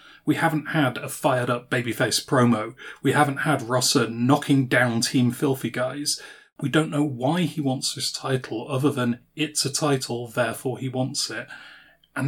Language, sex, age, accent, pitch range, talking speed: English, male, 30-49, British, 125-150 Hz, 165 wpm